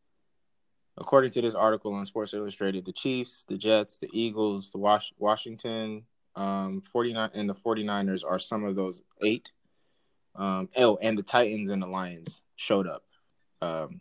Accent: American